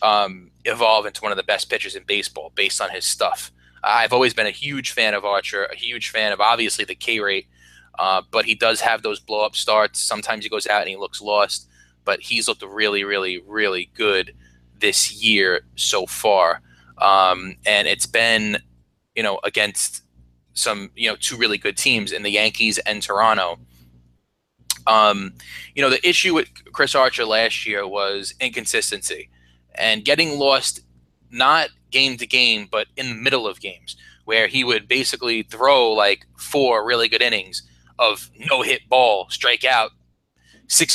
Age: 20-39